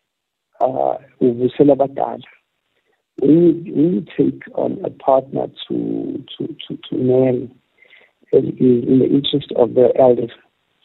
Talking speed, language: 145 wpm, English